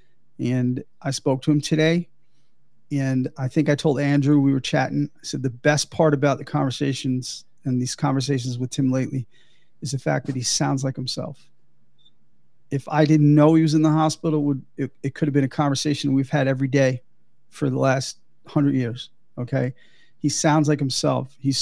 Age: 40-59